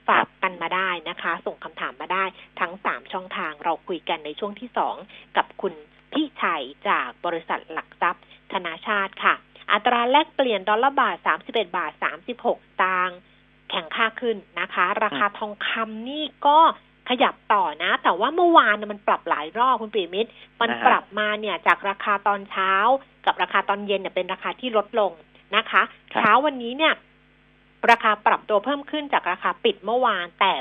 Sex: female